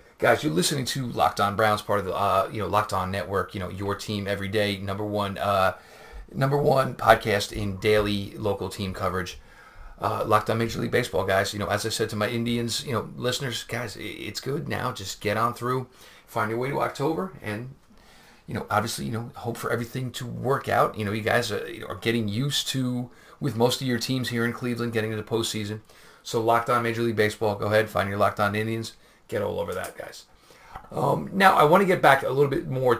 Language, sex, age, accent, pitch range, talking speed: English, male, 40-59, American, 105-125 Hz, 230 wpm